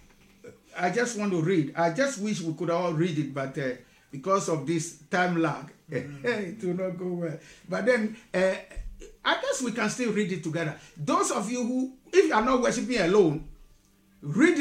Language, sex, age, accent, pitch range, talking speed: English, male, 50-69, Nigerian, 165-245 Hz, 195 wpm